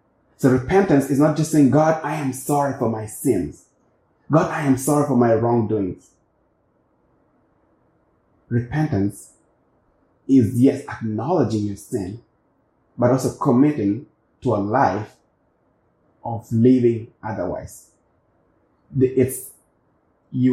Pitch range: 110-130 Hz